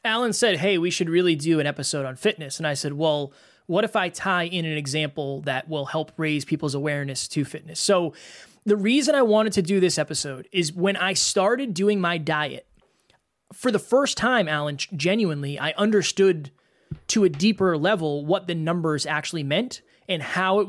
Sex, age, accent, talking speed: male, 20-39, American, 190 wpm